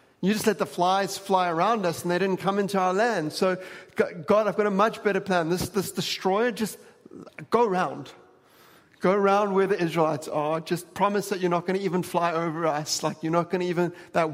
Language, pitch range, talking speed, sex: English, 145-190 Hz, 215 wpm, male